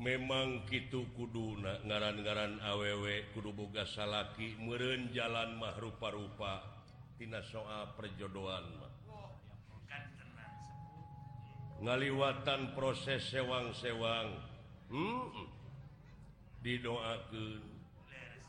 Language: Indonesian